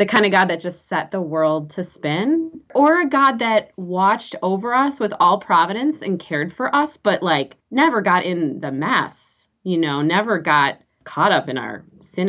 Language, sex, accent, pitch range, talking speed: English, female, American, 155-195 Hz, 200 wpm